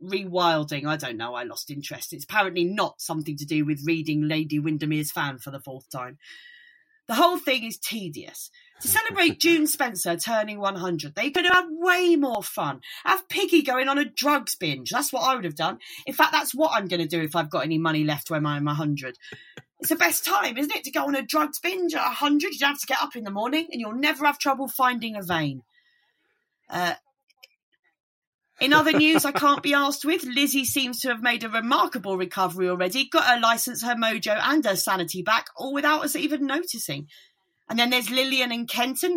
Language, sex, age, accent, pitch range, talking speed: English, female, 30-49, British, 180-305 Hz, 210 wpm